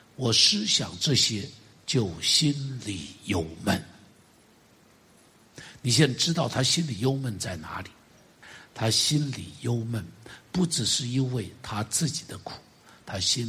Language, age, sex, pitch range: Chinese, 60-79, male, 110-170 Hz